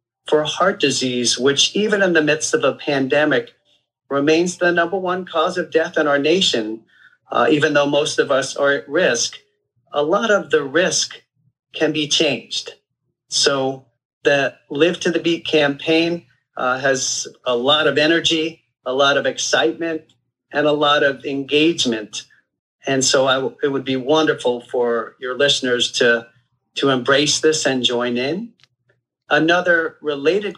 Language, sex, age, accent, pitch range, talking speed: English, male, 40-59, American, 125-155 Hz, 155 wpm